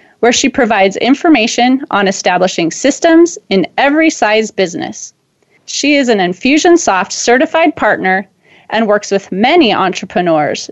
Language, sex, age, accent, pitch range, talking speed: English, female, 30-49, American, 195-285 Hz, 125 wpm